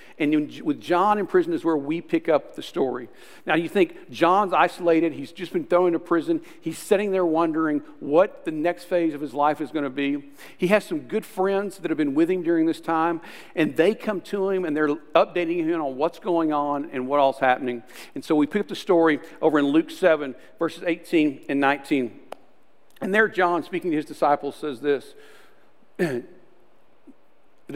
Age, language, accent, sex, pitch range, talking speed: 50-69, English, American, male, 150-220 Hz, 200 wpm